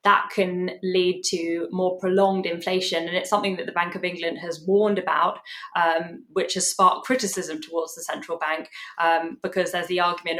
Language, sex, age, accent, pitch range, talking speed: English, female, 10-29, British, 170-190 Hz, 185 wpm